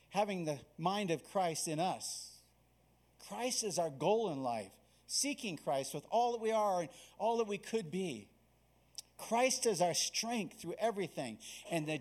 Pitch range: 130-205 Hz